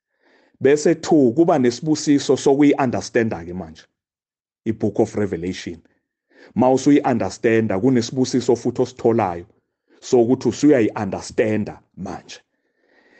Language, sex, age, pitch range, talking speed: English, male, 40-59, 110-145 Hz, 85 wpm